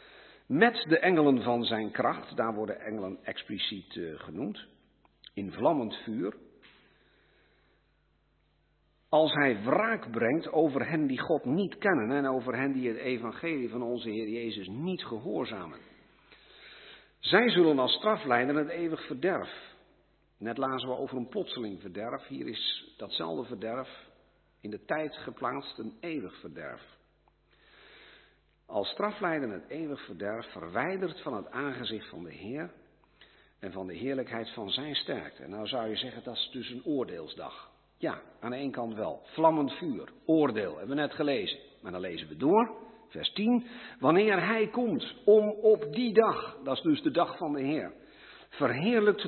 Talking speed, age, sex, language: 155 wpm, 50-69, male, Dutch